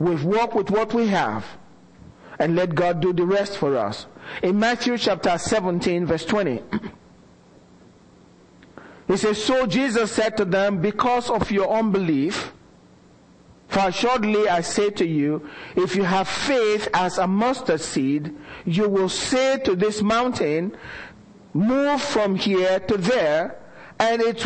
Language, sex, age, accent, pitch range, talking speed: English, male, 50-69, Nigerian, 195-260 Hz, 140 wpm